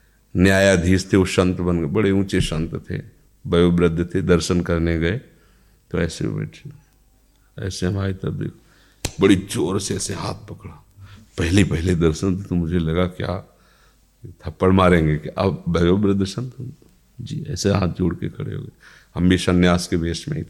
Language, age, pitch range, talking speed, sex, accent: Hindi, 50-69, 85-100 Hz, 165 wpm, male, native